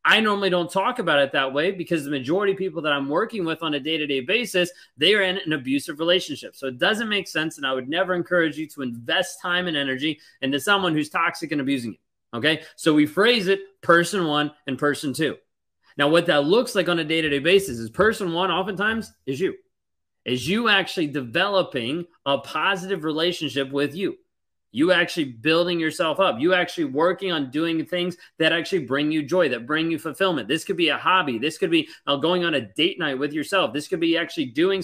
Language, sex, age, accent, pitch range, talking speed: English, male, 30-49, American, 145-190 Hz, 215 wpm